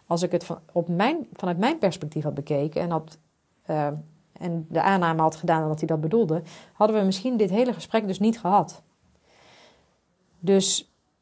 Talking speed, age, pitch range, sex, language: 155 wpm, 30-49, 165-210 Hz, female, Dutch